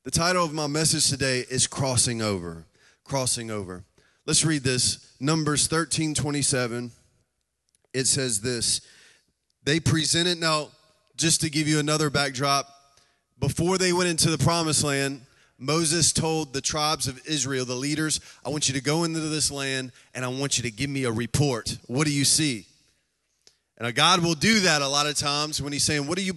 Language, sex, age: English, male, 30-49